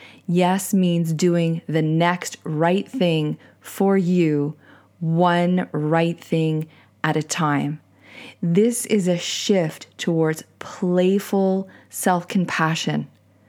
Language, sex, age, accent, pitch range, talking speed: English, female, 20-39, American, 160-190 Hz, 100 wpm